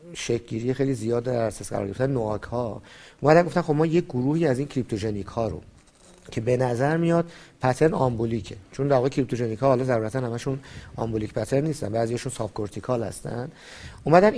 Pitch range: 115-145 Hz